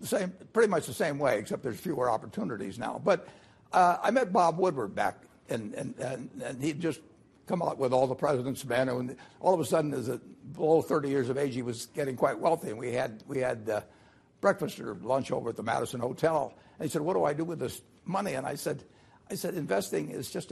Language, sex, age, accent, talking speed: English, male, 60-79, American, 235 wpm